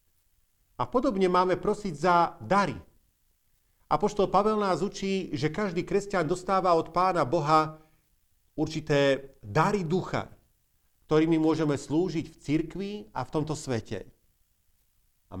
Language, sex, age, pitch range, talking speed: Slovak, male, 40-59, 125-185 Hz, 120 wpm